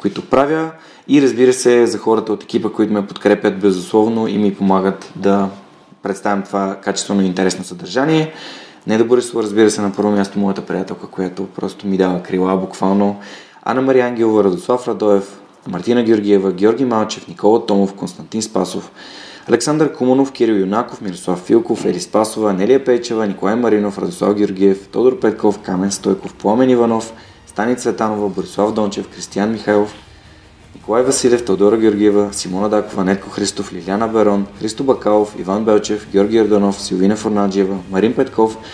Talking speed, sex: 150 wpm, male